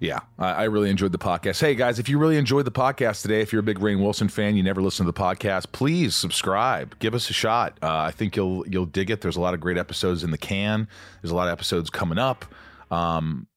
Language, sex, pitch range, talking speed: English, male, 85-105 Hz, 255 wpm